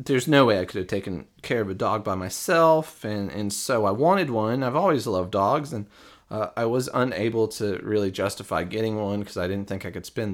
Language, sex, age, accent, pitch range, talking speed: English, male, 30-49, American, 100-130 Hz, 230 wpm